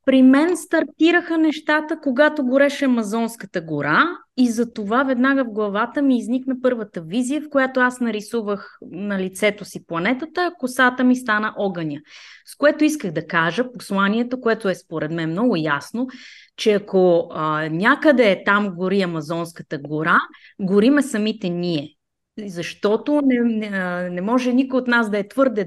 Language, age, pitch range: Bulgarian, 30-49, 180-260 Hz